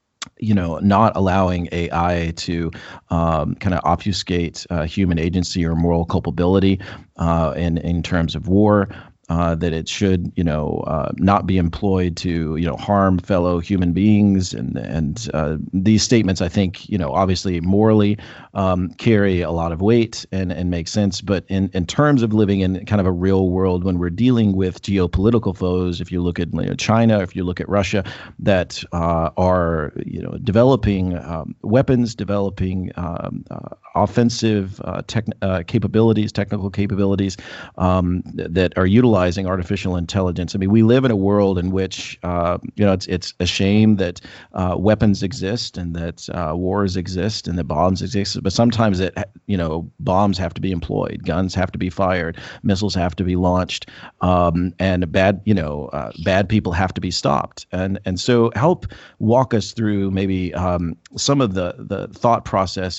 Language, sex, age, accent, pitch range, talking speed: English, male, 40-59, American, 90-100 Hz, 180 wpm